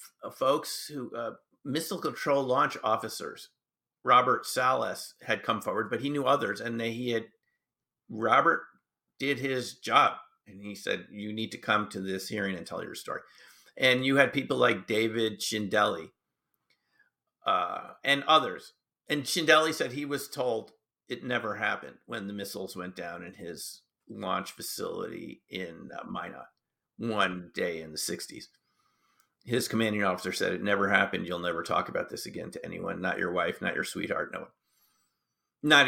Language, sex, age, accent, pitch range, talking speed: English, male, 50-69, American, 105-145 Hz, 160 wpm